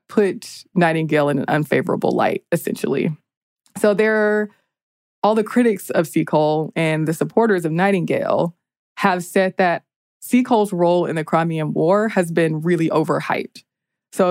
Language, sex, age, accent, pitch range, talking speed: English, female, 20-39, American, 160-195 Hz, 140 wpm